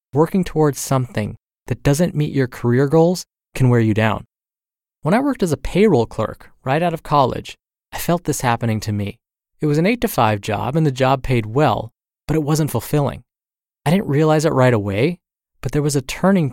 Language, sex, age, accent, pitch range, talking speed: English, male, 20-39, American, 120-160 Hz, 205 wpm